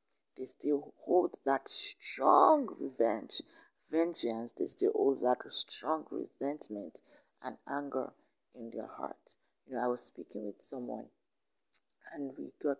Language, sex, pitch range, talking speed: English, female, 130-160 Hz, 130 wpm